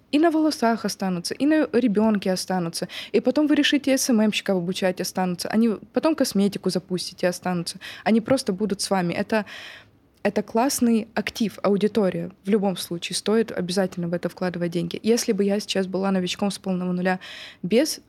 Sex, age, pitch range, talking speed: female, 20-39, 185-220 Hz, 165 wpm